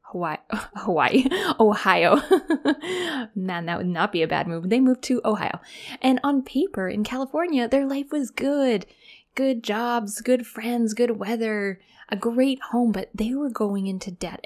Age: 20-39